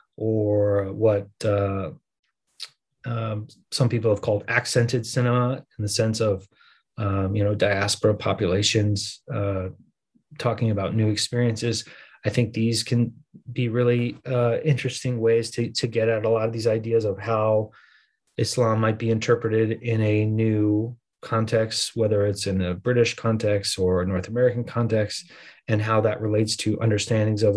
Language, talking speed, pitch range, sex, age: English, 150 wpm, 105-120 Hz, male, 30-49